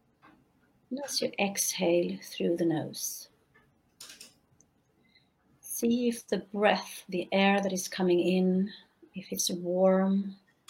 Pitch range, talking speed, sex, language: 175-210 Hz, 105 wpm, female, English